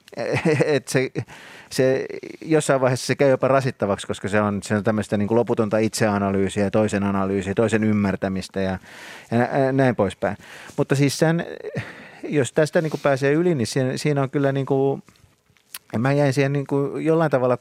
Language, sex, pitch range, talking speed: Finnish, male, 105-135 Hz, 165 wpm